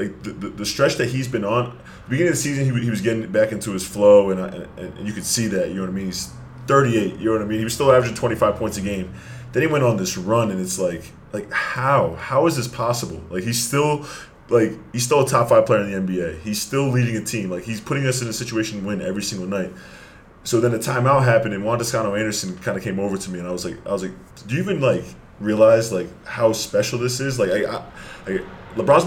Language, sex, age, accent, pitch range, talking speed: English, male, 20-39, American, 95-125 Hz, 280 wpm